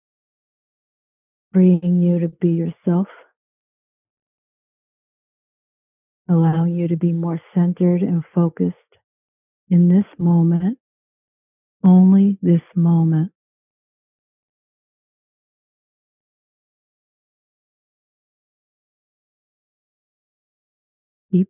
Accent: American